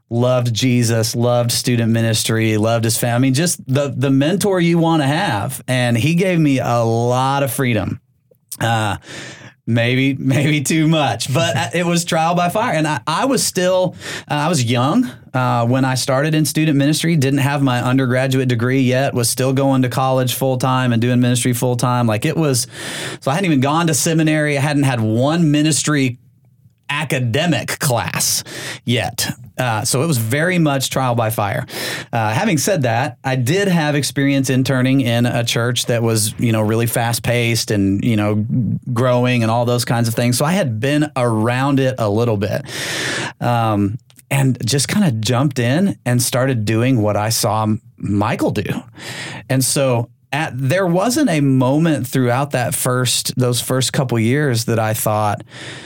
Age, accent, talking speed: 30-49, American, 175 wpm